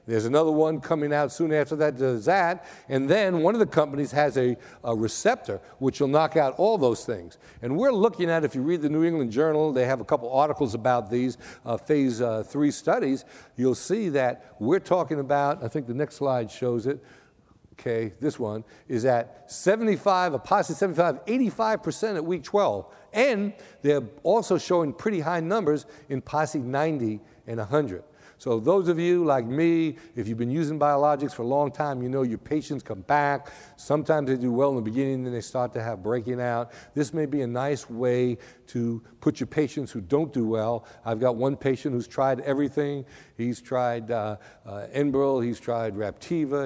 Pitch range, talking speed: 120-155 Hz, 195 wpm